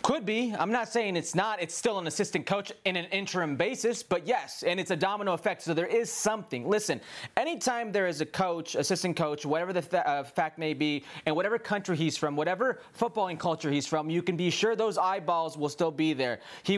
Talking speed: 220 wpm